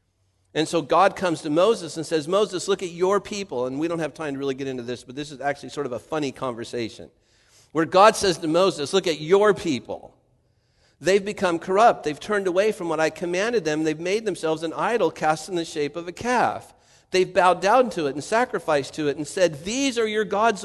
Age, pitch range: 50-69, 145-205 Hz